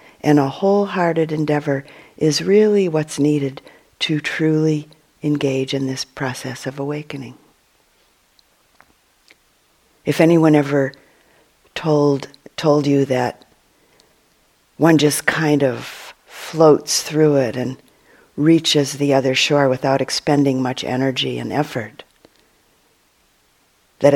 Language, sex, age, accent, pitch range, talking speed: English, female, 50-69, American, 135-160 Hz, 105 wpm